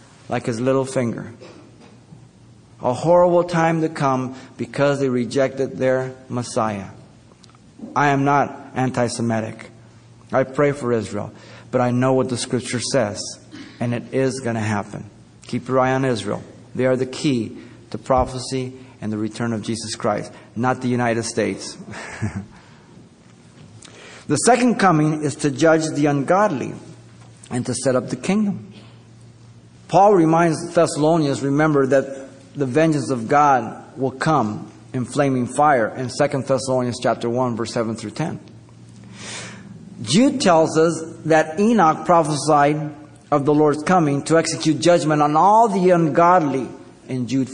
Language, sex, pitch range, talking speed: English, male, 120-150 Hz, 140 wpm